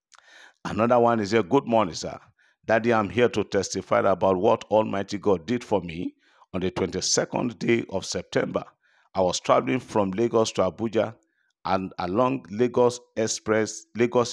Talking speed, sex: 145 wpm, male